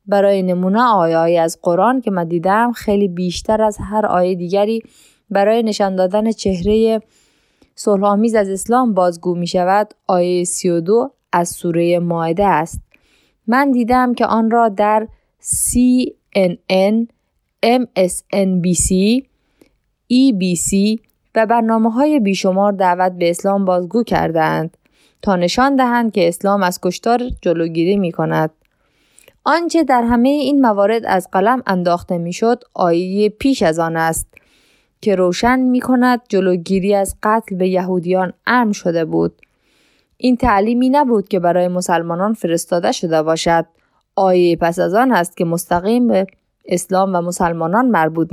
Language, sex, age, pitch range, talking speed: Persian, female, 20-39, 180-230 Hz, 130 wpm